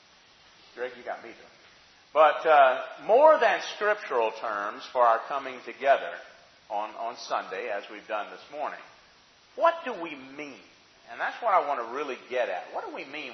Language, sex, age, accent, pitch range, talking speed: English, male, 40-59, American, 135-200 Hz, 175 wpm